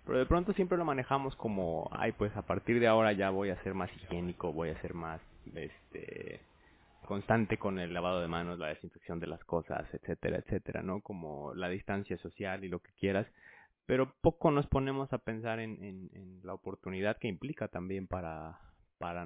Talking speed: 195 wpm